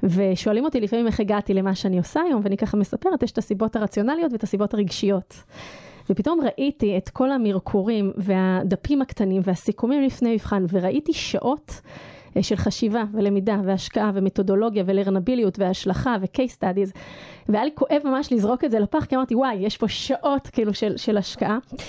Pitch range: 200-250 Hz